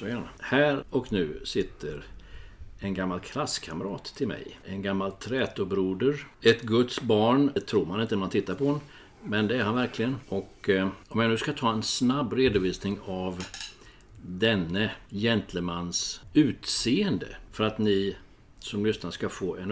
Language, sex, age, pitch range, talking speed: Swedish, male, 60-79, 95-125 Hz, 150 wpm